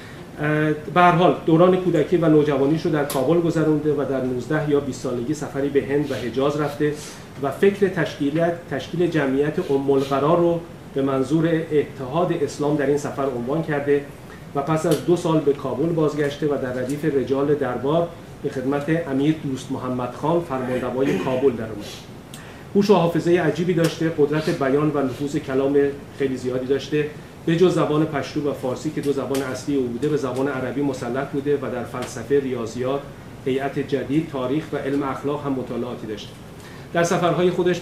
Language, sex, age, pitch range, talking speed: Persian, male, 40-59, 135-160 Hz, 170 wpm